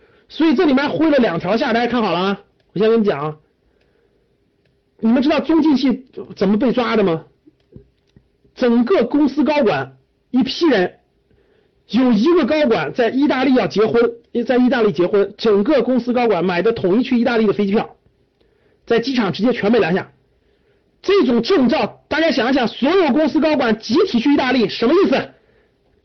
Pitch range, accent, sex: 200-295 Hz, native, male